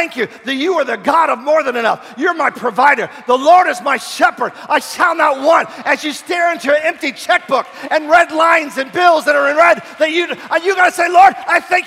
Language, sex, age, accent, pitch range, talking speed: English, male, 40-59, American, 295-345 Hz, 245 wpm